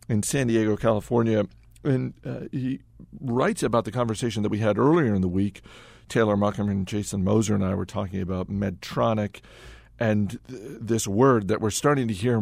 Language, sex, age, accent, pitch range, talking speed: English, male, 50-69, American, 100-120 Hz, 180 wpm